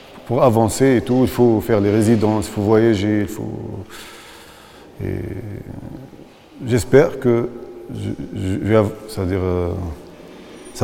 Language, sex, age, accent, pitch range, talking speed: French, male, 40-59, French, 100-120 Hz, 125 wpm